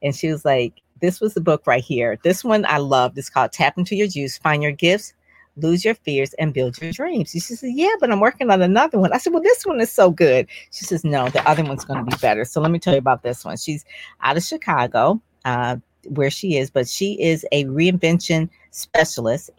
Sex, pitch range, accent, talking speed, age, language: female, 140-185 Hz, American, 240 wpm, 40-59, English